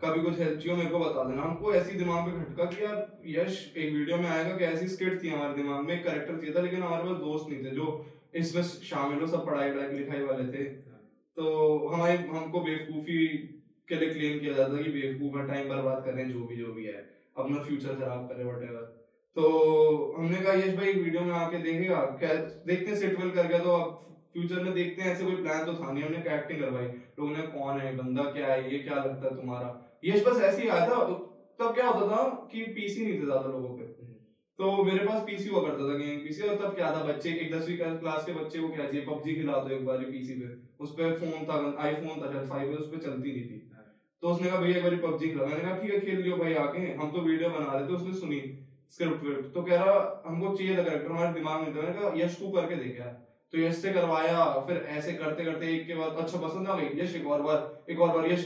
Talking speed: 130 wpm